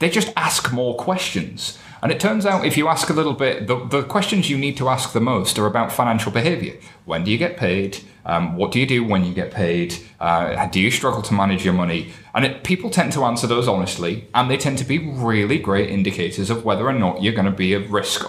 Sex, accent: male, British